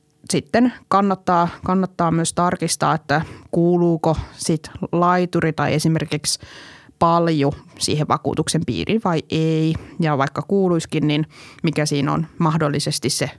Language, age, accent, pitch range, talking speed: Finnish, 20-39, native, 155-175 Hz, 115 wpm